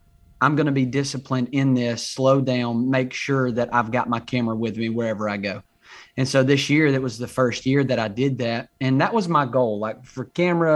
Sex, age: male, 30-49